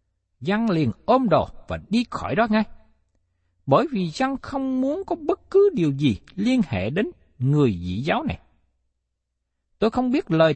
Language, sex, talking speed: Vietnamese, male, 170 wpm